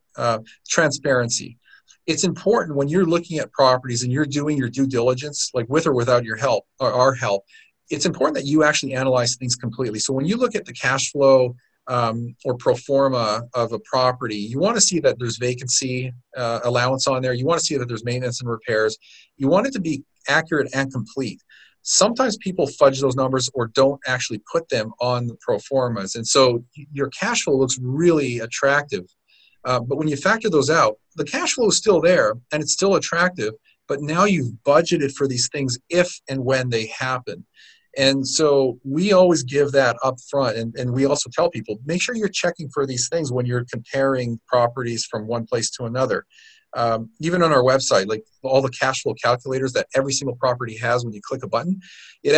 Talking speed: 205 wpm